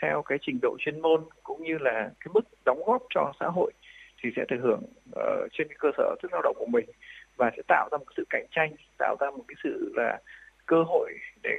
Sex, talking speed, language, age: male, 245 wpm, Vietnamese, 20-39